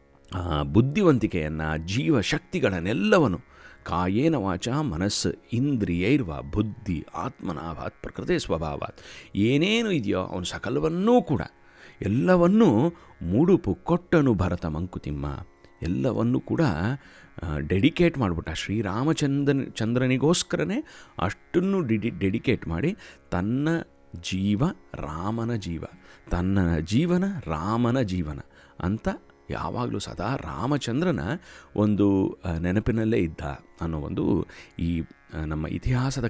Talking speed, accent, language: 85 wpm, native, Kannada